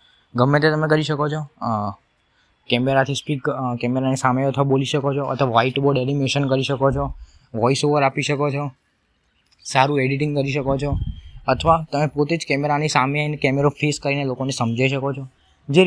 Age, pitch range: 20-39, 125-150 Hz